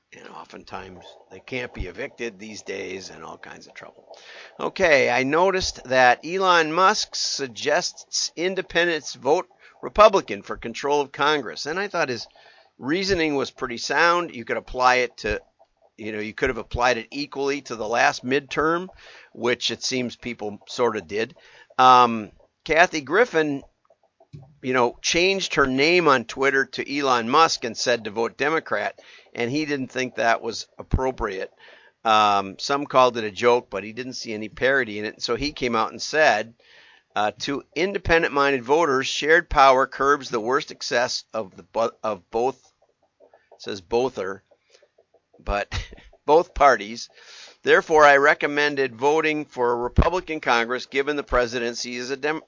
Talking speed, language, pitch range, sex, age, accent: 160 wpm, English, 115-145 Hz, male, 50-69, American